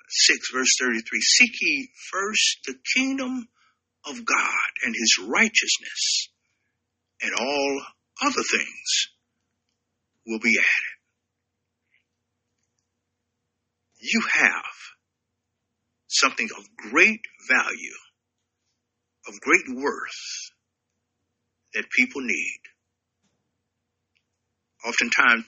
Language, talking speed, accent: English, 80 wpm, American